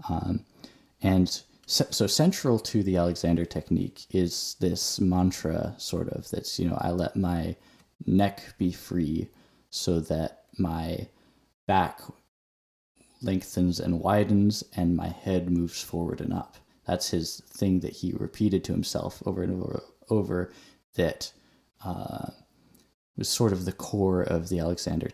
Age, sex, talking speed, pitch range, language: 10-29, male, 140 wpm, 85-100 Hz, English